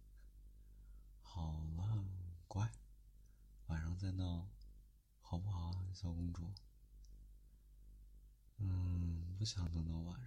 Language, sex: Chinese, male